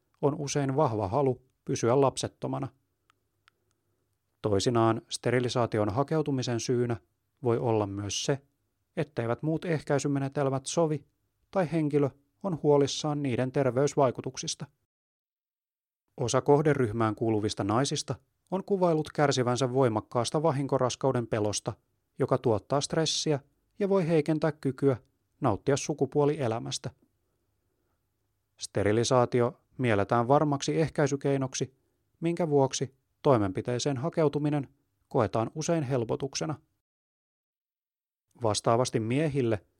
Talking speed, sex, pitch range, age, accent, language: 85 wpm, male, 115-145 Hz, 30-49, native, Finnish